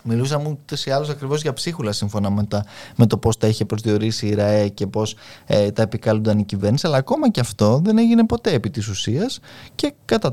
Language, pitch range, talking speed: Greek, 110-160 Hz, 210 wpm